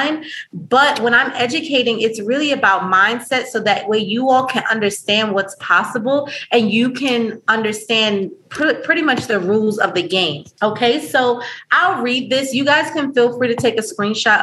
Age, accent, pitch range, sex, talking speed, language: 30-49, American, 195-245 Hz, female, 175 wpm, English